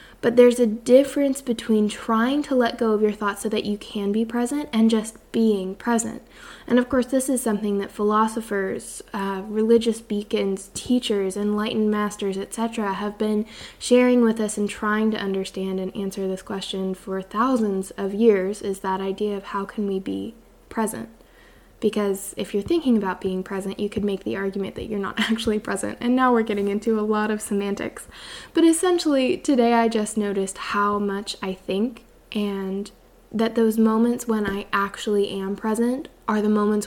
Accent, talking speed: American, 180 wpm